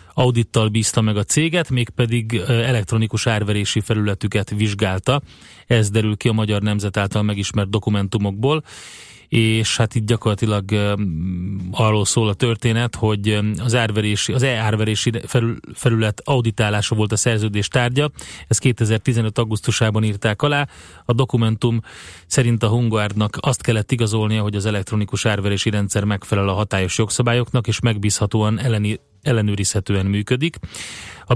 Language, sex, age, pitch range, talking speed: Hungarian, male, 30-49, 105-120 Hz, 130 wpm